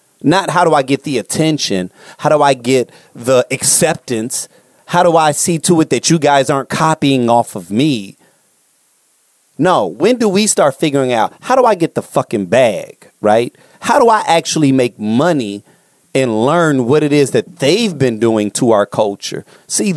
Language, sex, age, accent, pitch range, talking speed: English, male, 30-49, American, 120-160 Hz, 185 wpm